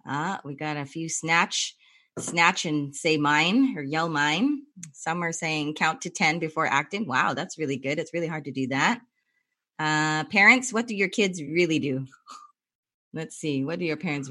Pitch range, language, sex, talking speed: 150-215 Hz, English, female, 190 wpm